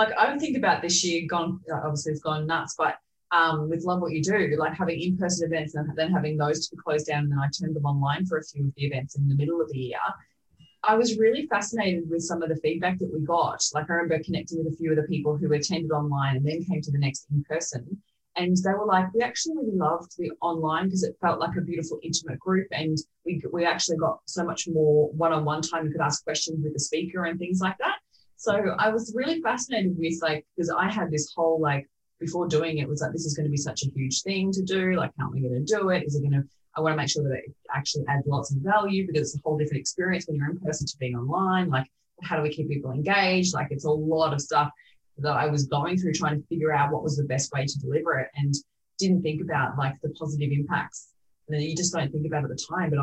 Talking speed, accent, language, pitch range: 265 wpm, Australian, English, 150-175 Hz